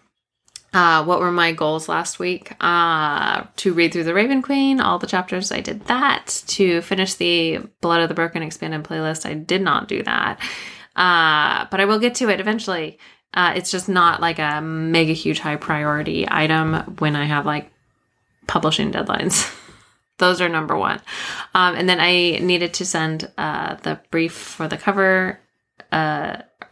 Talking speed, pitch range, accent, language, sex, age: 170 wpm, 160-195 Hz, American, English, female, 20-39